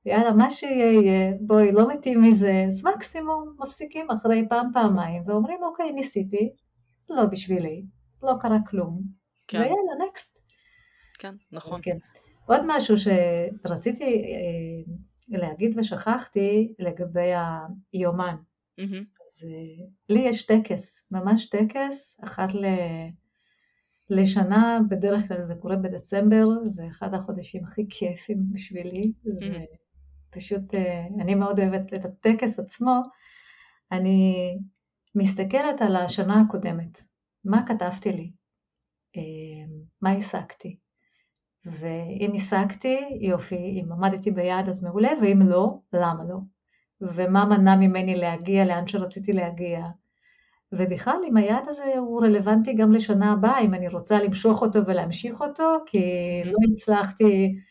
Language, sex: English, female